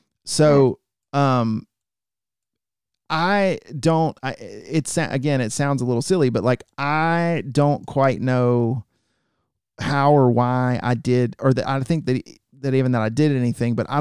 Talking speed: 155 wpm